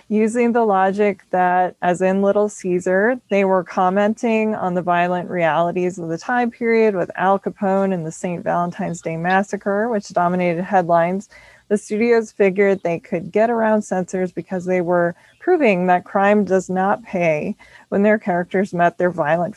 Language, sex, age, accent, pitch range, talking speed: English, female, 20-39, American, 180-210 Hz, 165 wpm